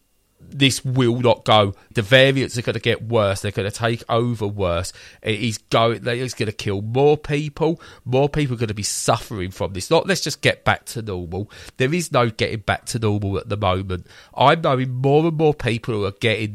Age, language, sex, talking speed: 30-49, English, male, 225 wpm